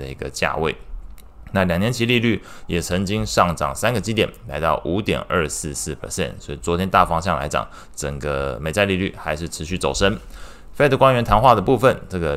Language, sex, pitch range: Chinese, male, 80-105 Hz